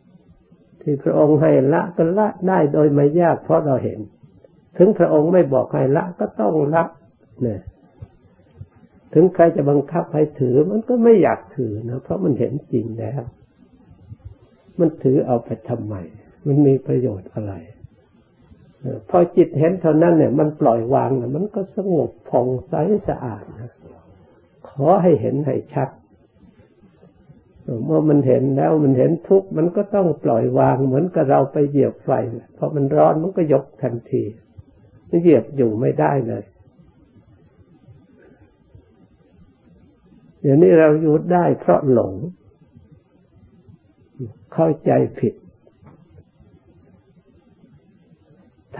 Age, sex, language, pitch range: 60-79, male, Thai, 125-165 Hz